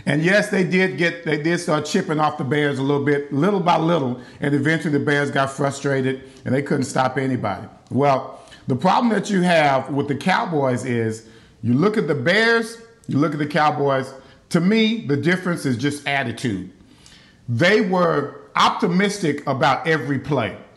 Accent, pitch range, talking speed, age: American, 140-195 Hz, 180 wpm, 50-69